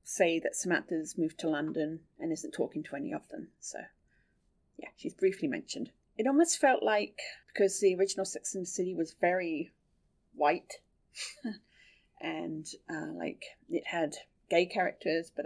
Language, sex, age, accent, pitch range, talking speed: English, female, 30-49, British, 170-225 Hz, 155 wpm